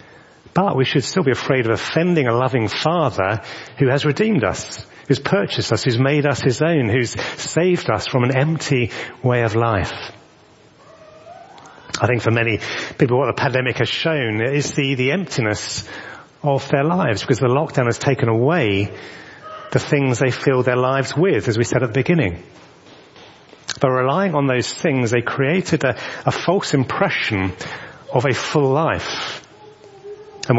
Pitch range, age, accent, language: 115-150 Hz, 40-59, British, English